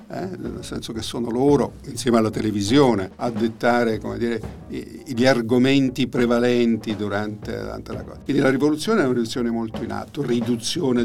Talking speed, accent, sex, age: 145 wpm, native, male, 50-69